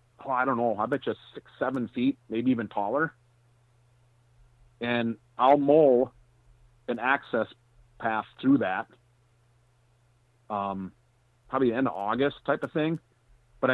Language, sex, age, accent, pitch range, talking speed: English, male, 40-59, American, 120-135 Hz, 135 wpm